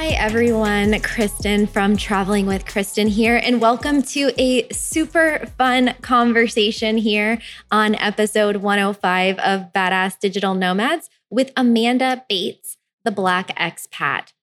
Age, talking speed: 20-39, 120 wpm